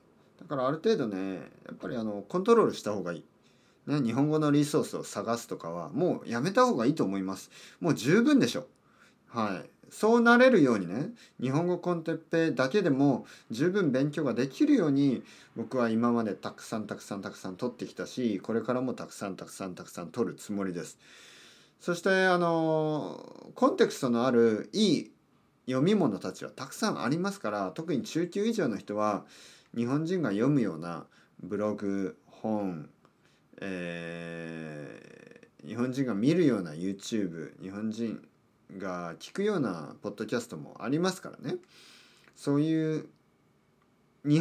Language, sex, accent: Japanese, male, native